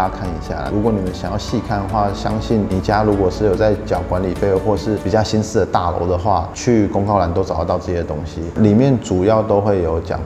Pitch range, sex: 90-110 Hz, male